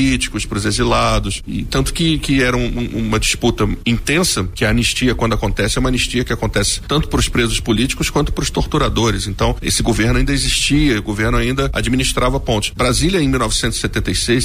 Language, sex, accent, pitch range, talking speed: Portuguese, male, Brazilian, 105-130 Hz, 175 wpm